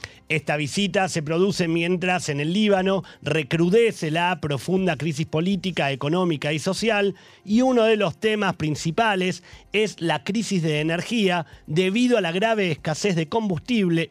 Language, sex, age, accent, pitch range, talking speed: Spanish, male, 40-59, Argentinian, 155-200 Hz, 145 wpm